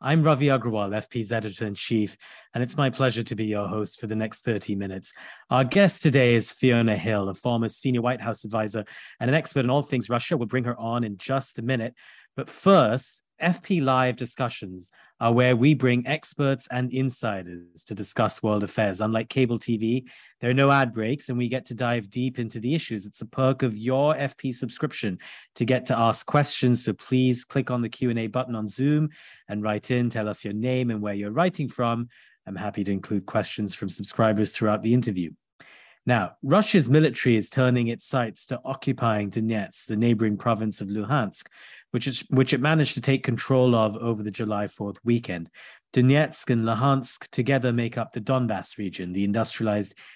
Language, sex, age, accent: English, male, 30-49, British